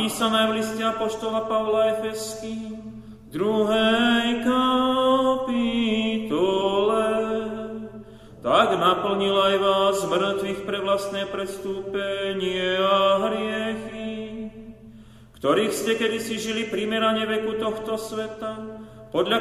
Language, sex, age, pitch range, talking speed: Slovak, male, 30-49, 195-220 Hz, 85 wpm